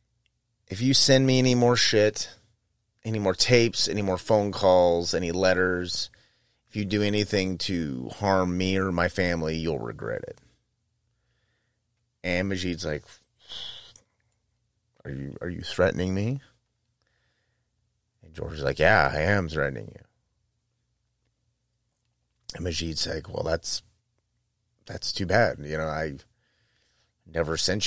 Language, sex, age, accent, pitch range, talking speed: English, male, 30-49, American, 90-115 Hz, 125 wpm